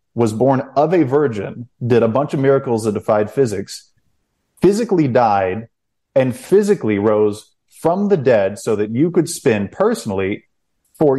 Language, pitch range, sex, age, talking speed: English, 105-140 Hz, male, 30-49, 150 wpm